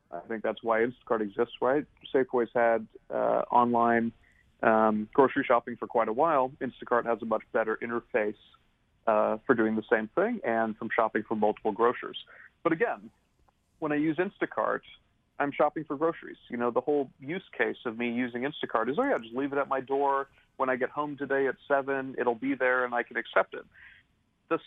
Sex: male